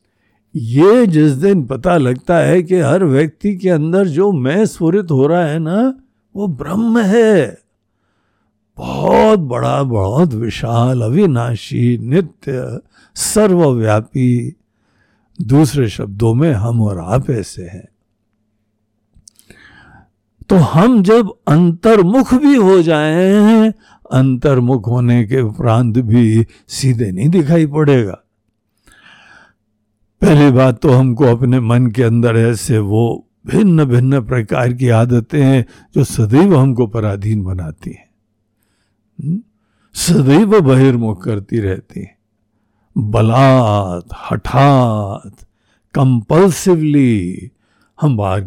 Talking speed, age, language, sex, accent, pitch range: 105 wpm, 60-79, Hindi, male, native, 105-155 Hz